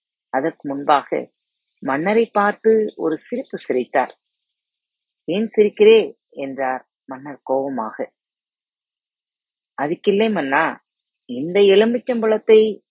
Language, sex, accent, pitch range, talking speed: Tamil, female, native, 145-220 Hz, 85 wpm